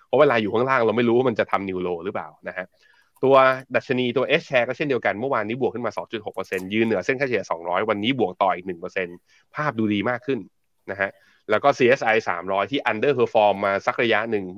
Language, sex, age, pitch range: Thai, male, 20-39, 100-130 Hz